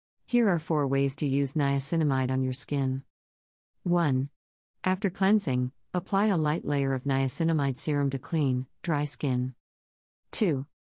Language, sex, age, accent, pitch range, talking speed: English, female, 50-69, American, 130-165 Hz, 140 wpm